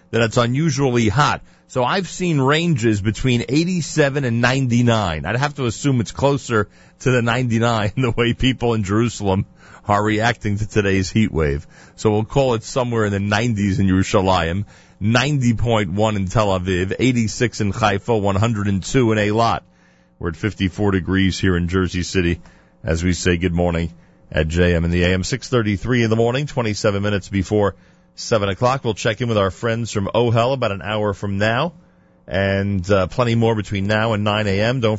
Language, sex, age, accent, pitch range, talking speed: English, male, 40-59, American, 95-120 Hz, 175 wpm